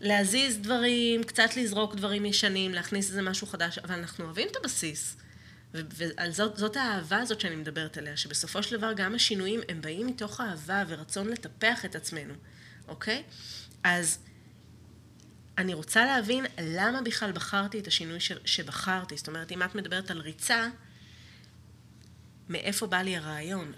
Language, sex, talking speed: Hebrew, female, 140 wpm